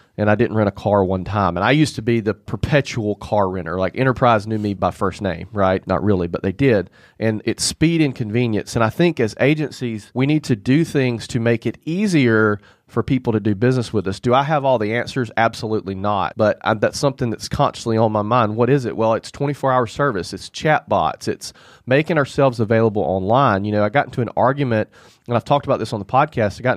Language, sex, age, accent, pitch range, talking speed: English, male, 40-59, American, 110-145 Hz, 230 wpm